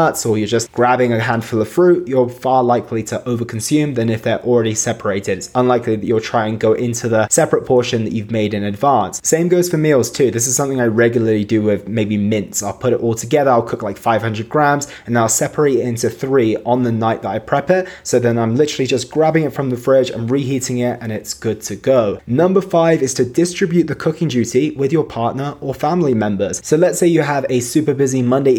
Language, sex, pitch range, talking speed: English, male, 115-145 Hz, 235 wpm